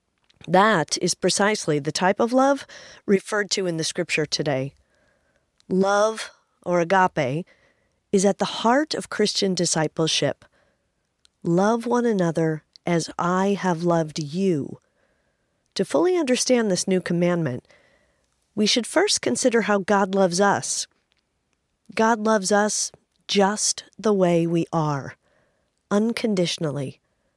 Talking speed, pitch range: 120 wpm, 165-215 Hz